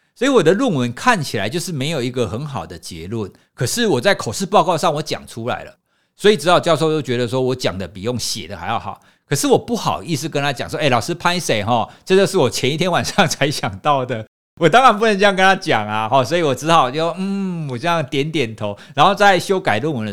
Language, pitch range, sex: Chinese, 125-190 Hz, male